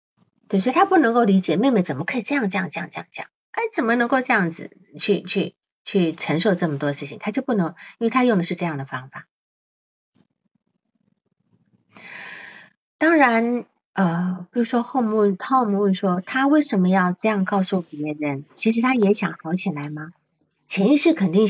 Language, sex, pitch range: Chinese, female, 165-230 Hz